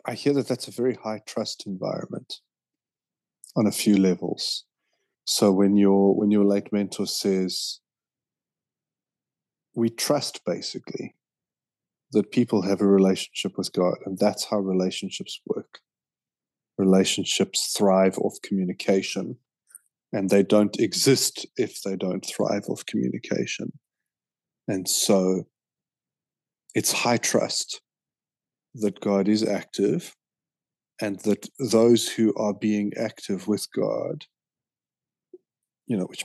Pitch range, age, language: 100-115 Hz, 30-49, English